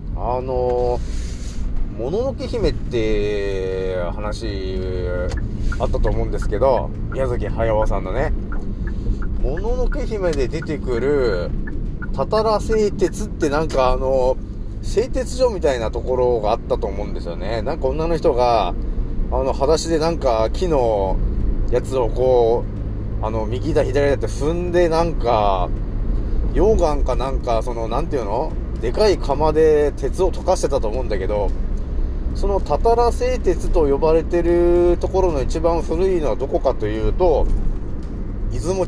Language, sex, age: Japanese, male, 30-49